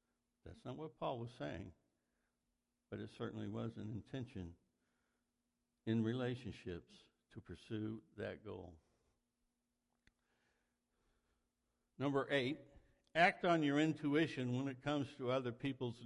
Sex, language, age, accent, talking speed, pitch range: male, English, 60-79, American, 110 wpm, 110-130 Hz